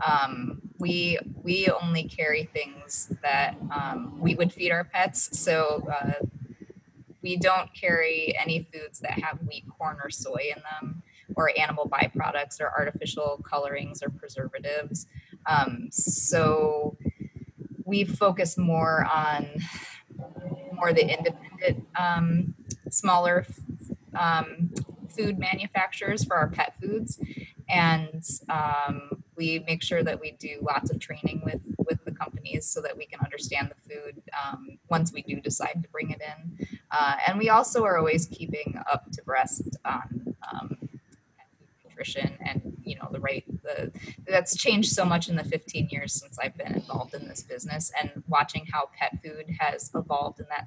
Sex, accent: female, American